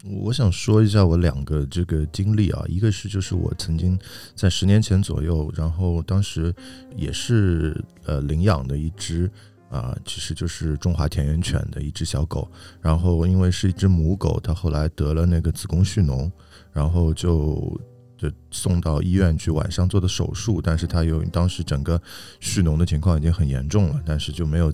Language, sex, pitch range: Chinese, male, 80-105 Hz